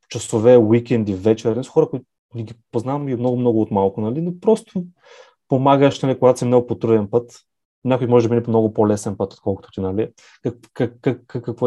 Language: Bulgarian